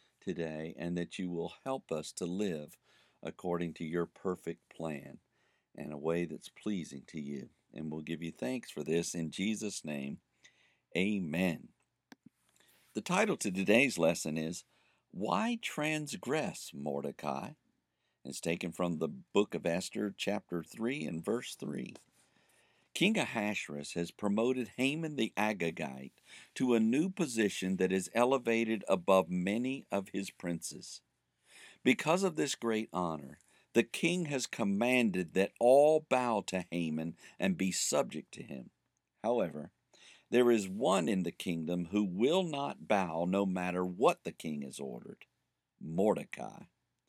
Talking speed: 140 wpm